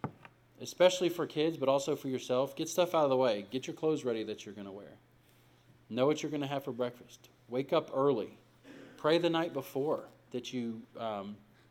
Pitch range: 115-135 Hz